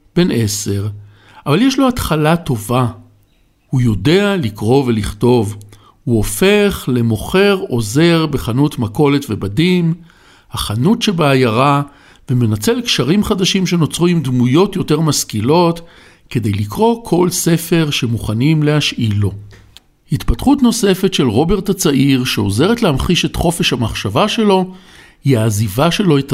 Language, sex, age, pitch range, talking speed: Hebrew, male, 60-79, 120-180 Hz, 115 wpm